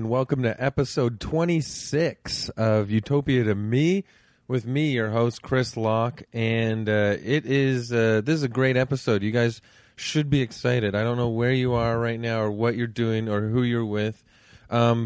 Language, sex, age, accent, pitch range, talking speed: English, male, 30-49, American, 110-130 Hz, 185 wpm